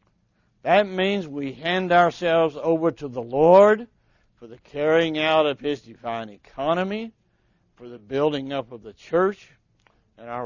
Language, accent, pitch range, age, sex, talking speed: English, American, 125-185 Hz, 60-79, male, 150 wpm